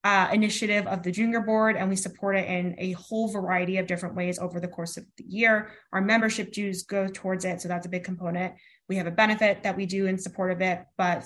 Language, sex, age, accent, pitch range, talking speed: English, female, 20-39, American, 180-205 Hz, 245 wpm